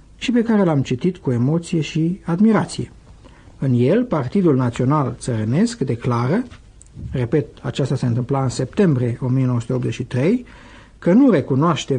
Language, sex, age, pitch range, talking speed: Romanian, male, 60-79, 125-160 Hz, 125 wpm